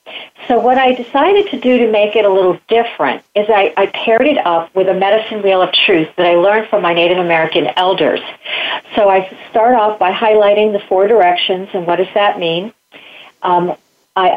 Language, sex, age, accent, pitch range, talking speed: English, female, 50-69, American, 180-220 Hz, 200 wpm